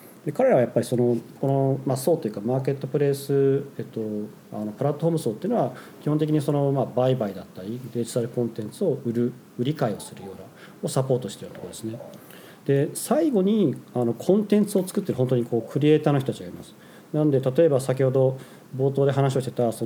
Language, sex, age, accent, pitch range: Japanese, male, 40-59, native, 110-145 Hz